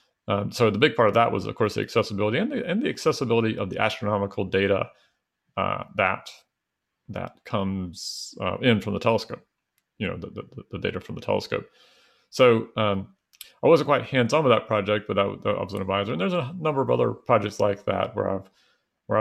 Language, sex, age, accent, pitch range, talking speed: English, male, 40-59, American, 100-120 Hz, 205 wpm